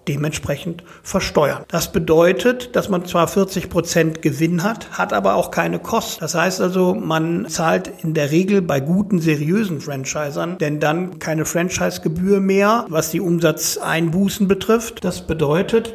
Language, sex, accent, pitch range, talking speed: German, male, German, 155-185 Hz, 145 wpm